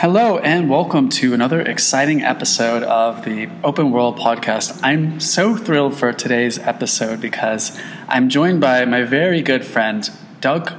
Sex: male